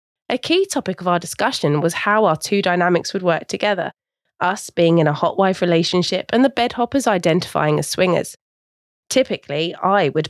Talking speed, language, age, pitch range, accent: 175 wpm, English, 20-39, 165-225 Hz, British